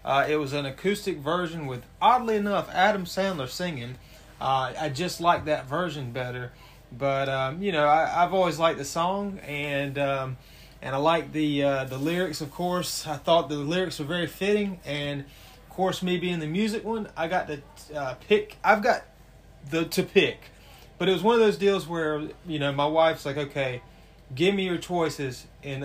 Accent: American